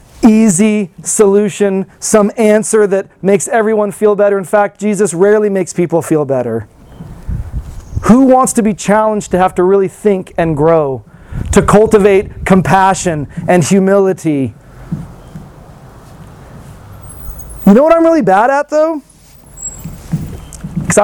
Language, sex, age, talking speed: English, male, 30-49, 125 wpm